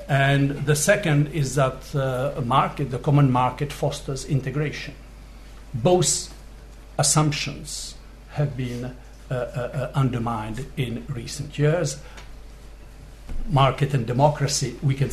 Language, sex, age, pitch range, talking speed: English, male, 60-79, 130-150 Hz, 105 wpm